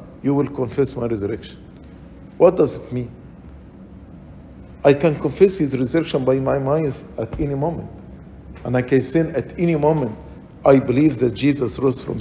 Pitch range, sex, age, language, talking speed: 135-185 Hz, male, 50-69, English, 160 wpm